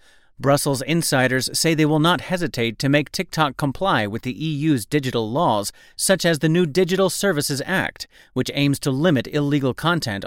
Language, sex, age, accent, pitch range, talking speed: English, male, 30-49, American, 125-185 Hz, 170 wpm